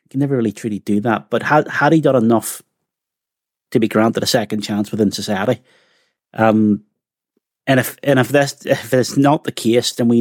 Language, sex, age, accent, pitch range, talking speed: English, male, 30-49, British, 115-150 Hz, 190 wpm